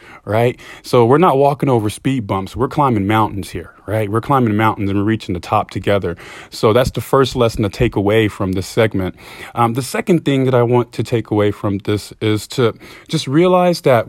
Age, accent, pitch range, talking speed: 30-49, American, 105-135 Hz, 215 wpm